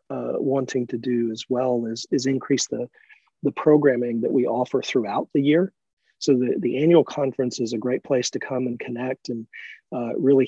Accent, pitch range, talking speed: American, 120-135 Hz, 195 wpm